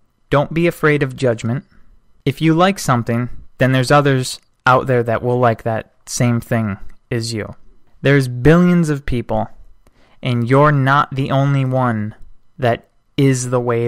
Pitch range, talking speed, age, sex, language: 115-135 Hz, 155 wpm, 20-39, male, English